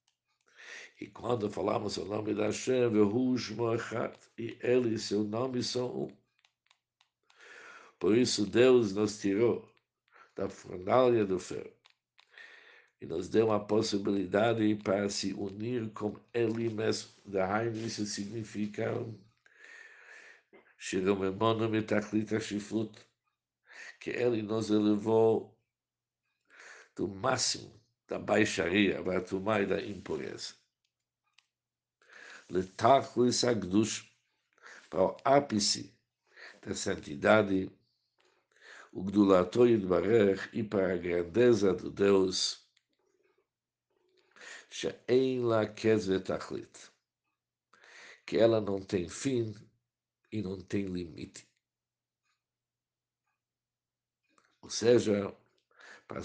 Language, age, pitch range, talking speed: Portuguese, 60-79, 100-120 Hz, 75 wpm